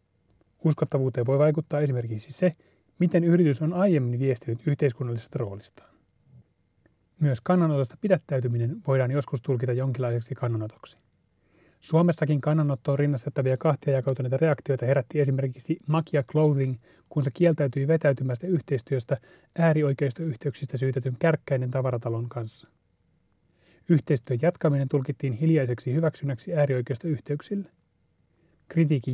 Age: 30-49